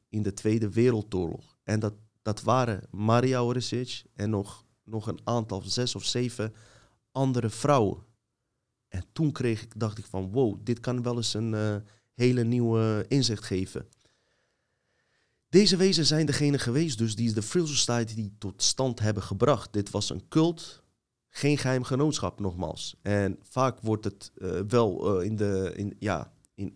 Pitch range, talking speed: 100-125 Hz, 165 wpm